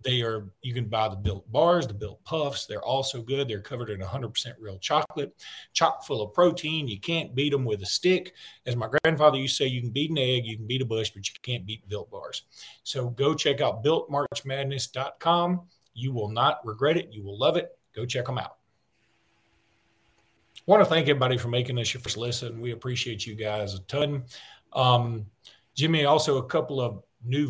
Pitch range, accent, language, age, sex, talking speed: 115-145 Hz, American, English, 40-59, male, 205 wpm